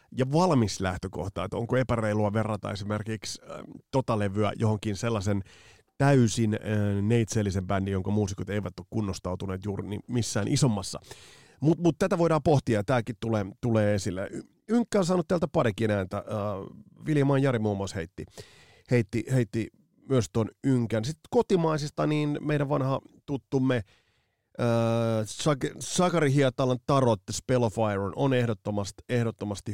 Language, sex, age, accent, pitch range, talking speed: Finnish, male, 30-49, native, 105-140 Hz, 140 wpm